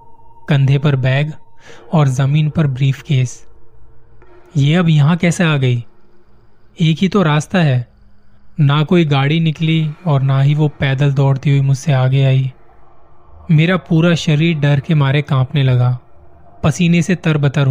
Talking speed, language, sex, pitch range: 150 wpm, Hindi, male, 130-155 Hz